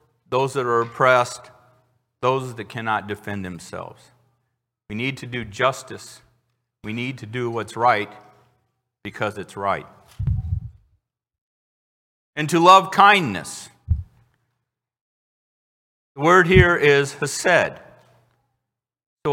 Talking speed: 100 wpm